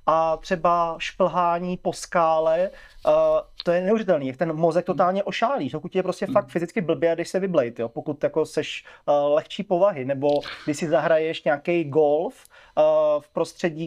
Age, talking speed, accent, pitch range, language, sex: 30-49, 165 wpm, native, 170-205 Hz, Czech, male